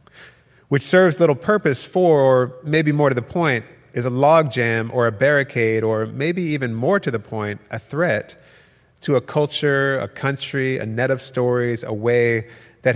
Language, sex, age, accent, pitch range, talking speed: English, male, 30-49, American, 115-135 Hz, 175 wpm